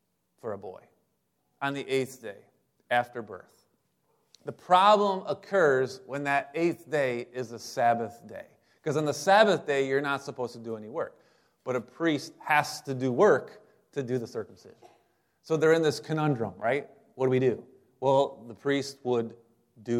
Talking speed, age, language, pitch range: 175 wpm, 30-49, English, 125-165 Hz